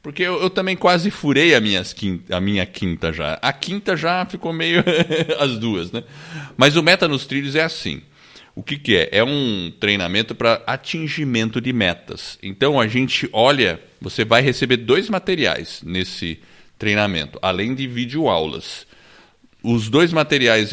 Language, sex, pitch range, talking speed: Portuguese, male, 95-135 Hz, 155 wpm